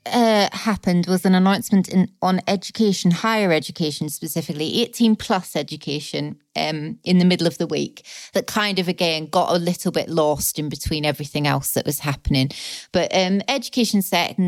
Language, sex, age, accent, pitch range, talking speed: English, female, 30-49, British, 165-205 Hz, 165 wpm